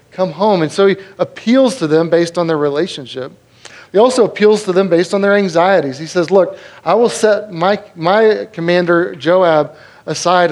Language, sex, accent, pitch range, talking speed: English, male, American, 155-190 Hz, 185 wpm